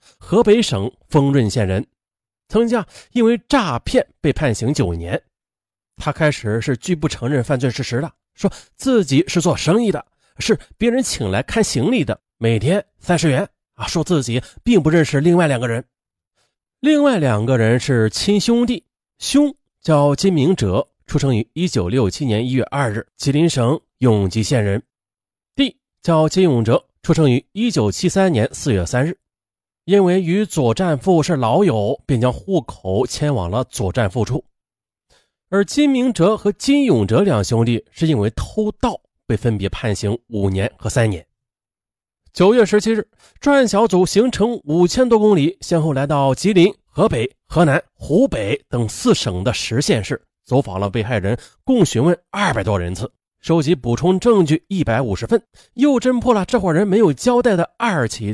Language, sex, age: Chinese, male, 30-49